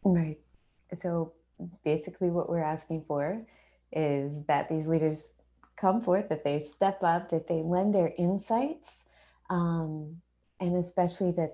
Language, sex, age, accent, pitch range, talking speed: English, female, 20-39, American, 165-200 Hz, 135 wpm